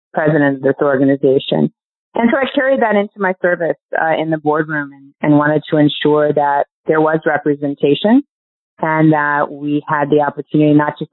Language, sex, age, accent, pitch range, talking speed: English, female, 30-49, American, 140-160 Hz, 180 wpm